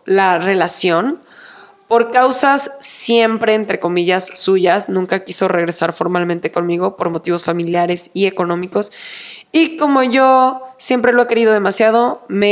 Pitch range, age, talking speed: 185-230 Hz, 20-39, 130 wpm